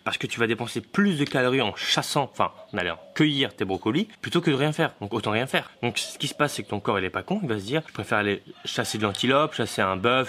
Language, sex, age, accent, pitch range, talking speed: French, male, 20-39, French, 100-130 Hz, 290 wpm